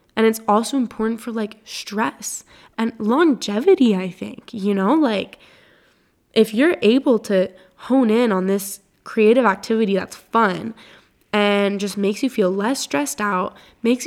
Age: 10-29